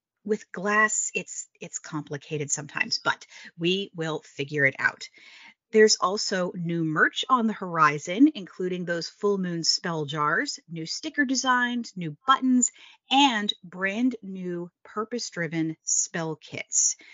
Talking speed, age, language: 125 wpm, 30-49, English